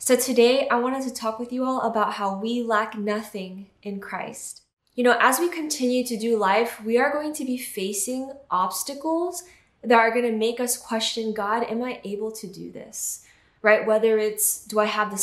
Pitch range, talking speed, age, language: 205-240 Hz, 205 wpm, 10-29, English